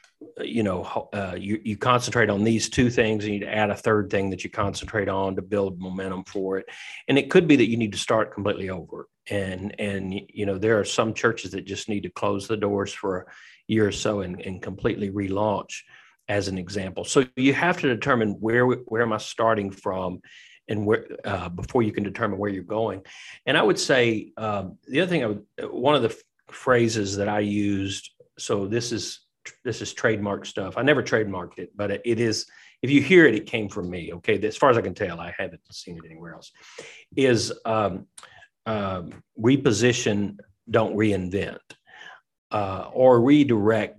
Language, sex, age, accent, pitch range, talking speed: English, male, 40-59, American, 100-115 Hz, 200 wpm